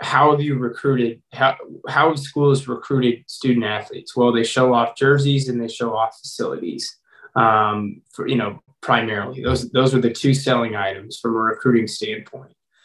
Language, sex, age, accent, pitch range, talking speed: English, male, 20-39, American, 115-135 Hz, 165 wpm